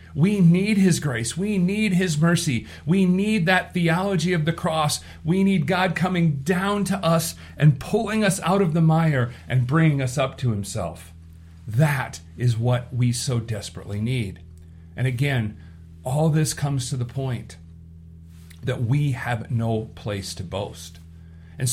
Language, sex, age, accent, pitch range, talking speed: English, male, 40-59, American, 110-165 Hz, 160 wpm